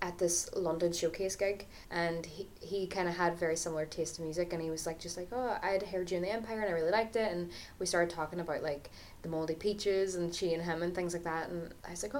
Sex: female